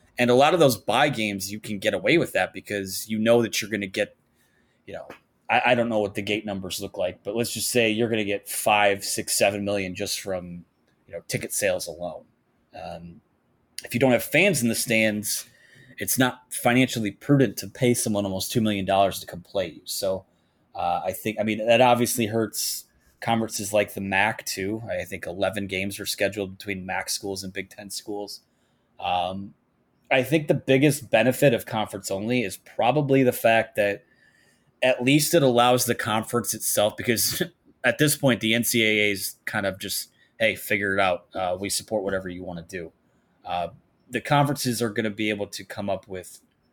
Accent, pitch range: American, 100-120 Hz